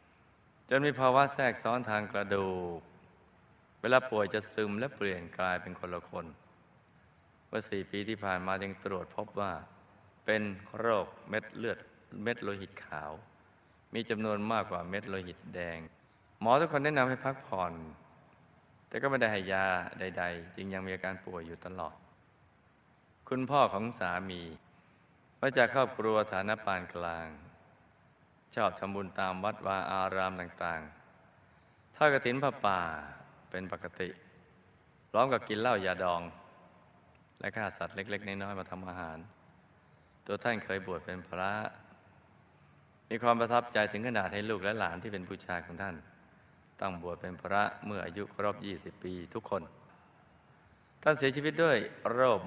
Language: Thai